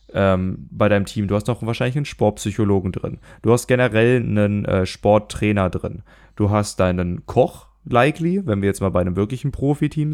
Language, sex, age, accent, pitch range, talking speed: German, male, 20-39, German, 100-130 Hz, 185 wpm